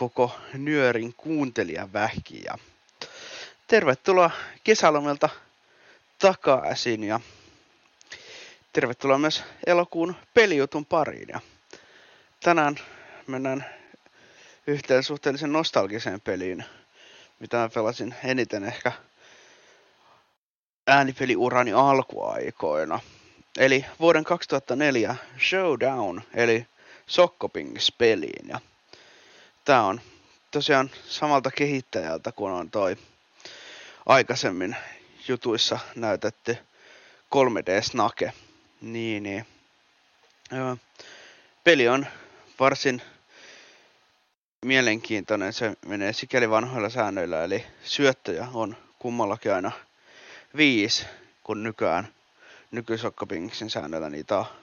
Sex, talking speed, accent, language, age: male, 75 wpm, native, Finnish, 30-49